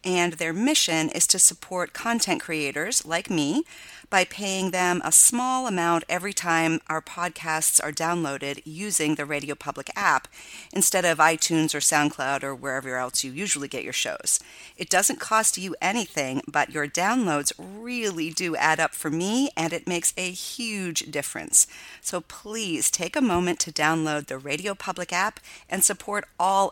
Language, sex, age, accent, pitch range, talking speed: English, female, 40-59, American, 150-190 Hz, 165 wpm